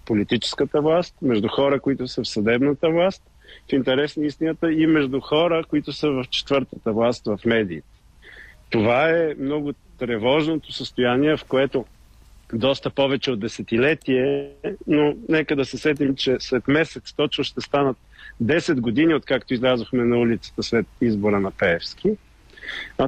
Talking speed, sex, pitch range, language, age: 145 wpm, male, 120-155 Hz, Bulgarian, 50-69